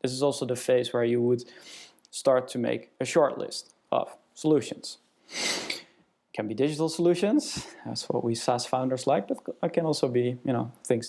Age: 20-39